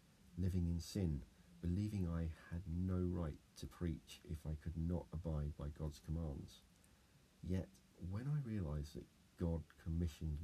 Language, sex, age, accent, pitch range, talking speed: English, male, 40-59, British, 80-90 Hz, 145 wpm